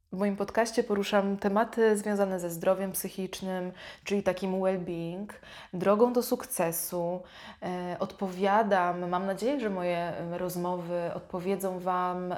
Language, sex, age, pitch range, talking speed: Polish, female, 20-39, 185-215 Hz, 110 wpm